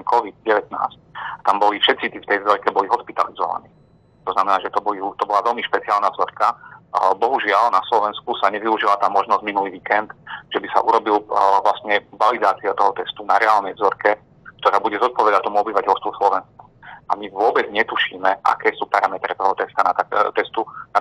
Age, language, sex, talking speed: 40-59, Slovak, male, 170 wpm